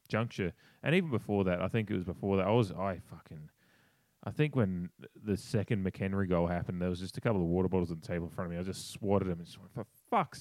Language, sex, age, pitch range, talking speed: English, male, 20-39, 95-120 Hz, 265 wpm